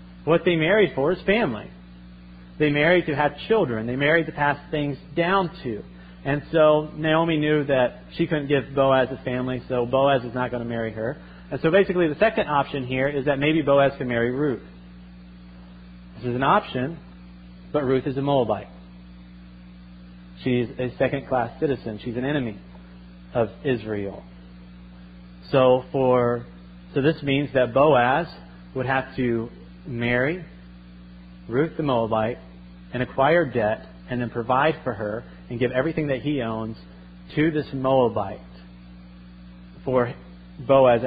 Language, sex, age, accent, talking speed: English, male, 40-59, American, 150 wpm